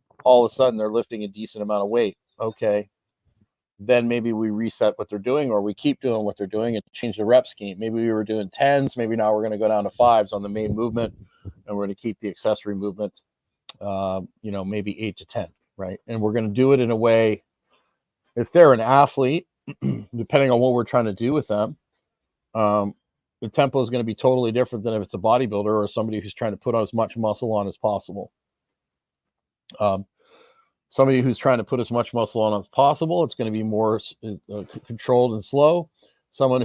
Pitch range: 105-120 Hz